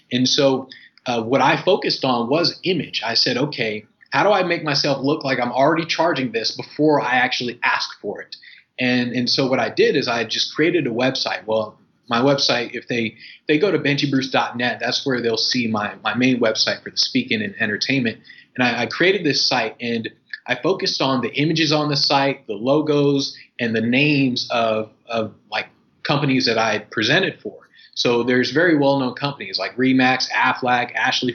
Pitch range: 120-150 Hz